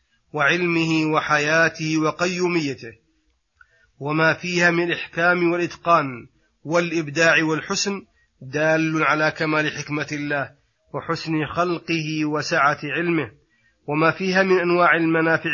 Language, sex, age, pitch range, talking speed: Arabic, male, 30-49, 150-165 Hz, 95 wpm